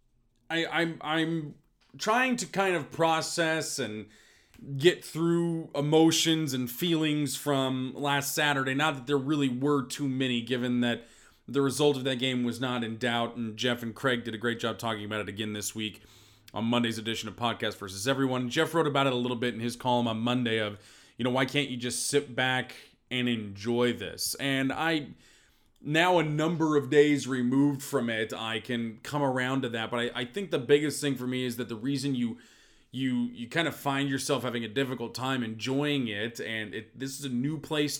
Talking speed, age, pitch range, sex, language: 205 wpm, 30-49, 120-145 Hz, male, English